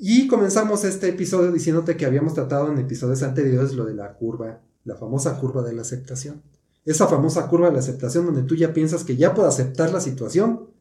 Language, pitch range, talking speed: Spanish, 130-185 Hz, 205 wpm